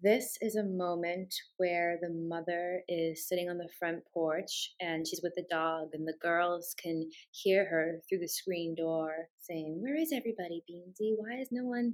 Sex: female